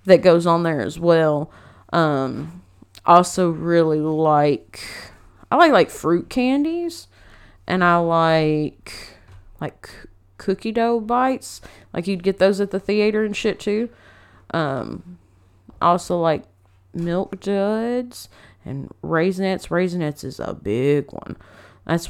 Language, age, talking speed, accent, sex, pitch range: English, 30-49, 120 wpm, American, female, 140-195 Hz